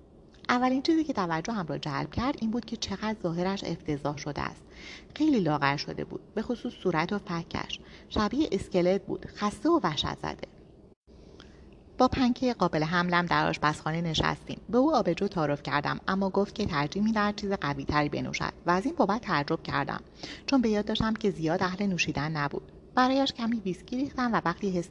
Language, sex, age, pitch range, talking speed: Persian, female, 30-49, 160-210 Hz, 175 wpm